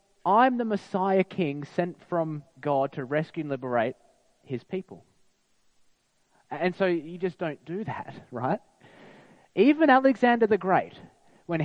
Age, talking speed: 20-39, 135 wpm